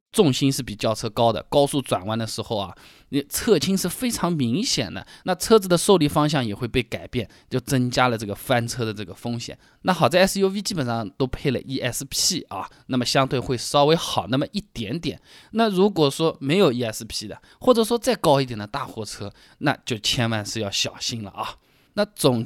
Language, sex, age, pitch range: Chinese, male, 20-39, 125-205 Hz